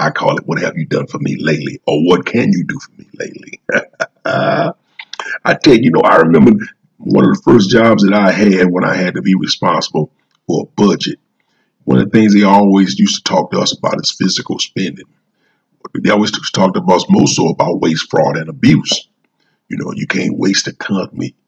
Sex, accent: male, American